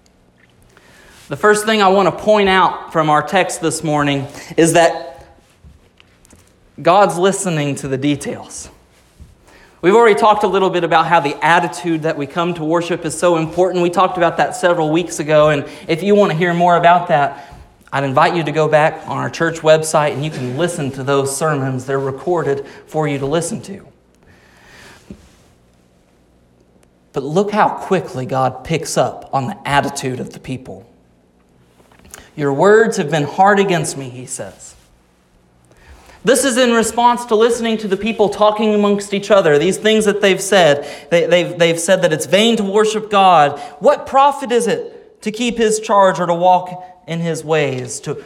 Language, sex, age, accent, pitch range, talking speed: English, male, 30-49, American, 135-190 Hz, 175 wpm